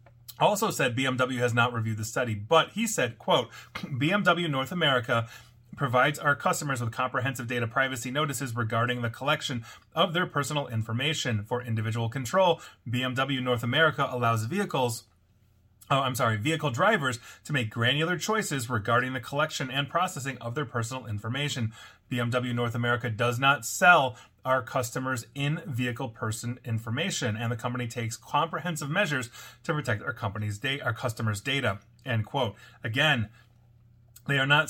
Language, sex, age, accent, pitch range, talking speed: English, male, 30-49, American, 115-150 Hz, 150 wpm